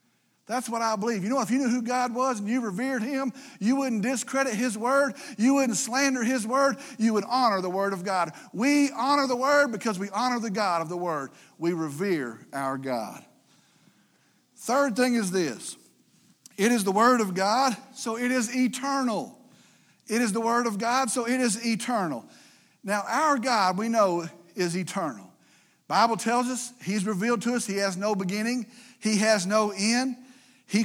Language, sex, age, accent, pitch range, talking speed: English, male, 50-69, American, 200-255 Hz, 185 wpm